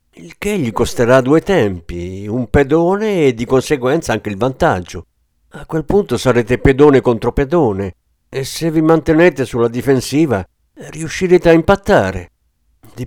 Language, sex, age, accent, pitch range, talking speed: Italian, male, 50-69, native, 95-150 Hz, 140 wpm